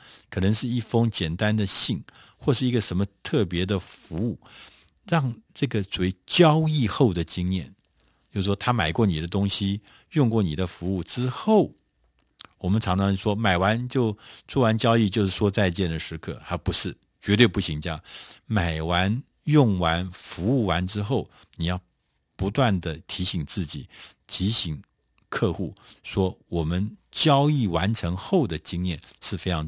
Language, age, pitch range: Chinese, 50-69, 85-115 Hz